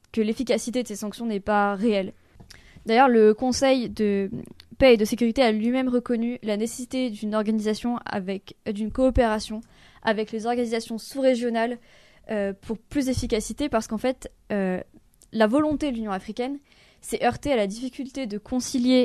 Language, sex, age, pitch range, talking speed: French, female, 20-39, 210-250 Hz, 160 wpm